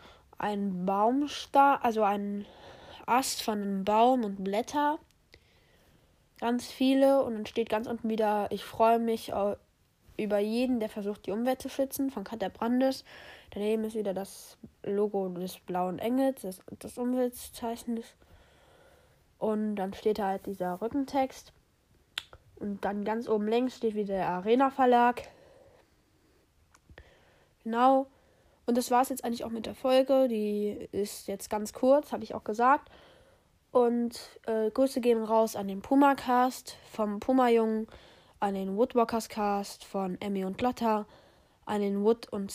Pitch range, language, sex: 205-255 Hz, German, female